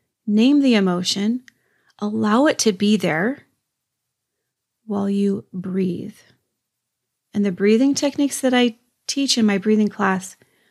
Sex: female